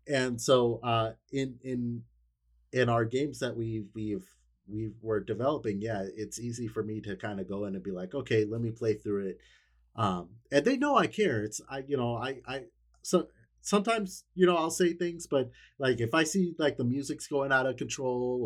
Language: English